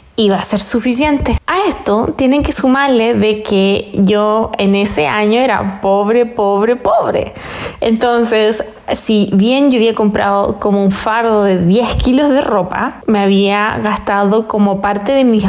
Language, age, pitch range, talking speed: Spanish, 20-39, 210-265 Hz, 155 wpm